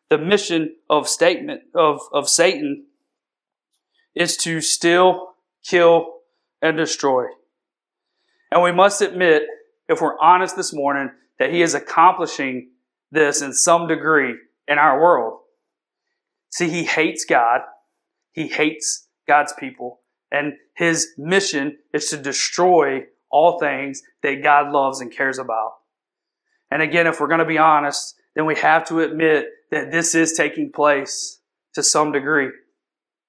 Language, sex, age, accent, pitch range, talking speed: English, male, 40-59, American, 145-185 Hz, 135 wpm